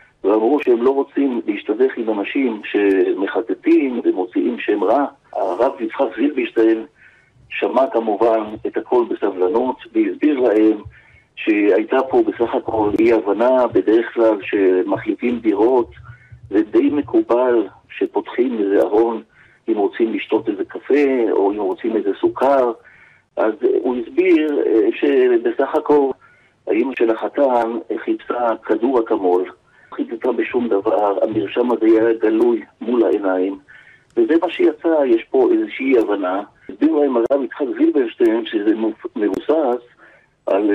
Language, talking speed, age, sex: Hebrew, 115 wpm, 50-69, male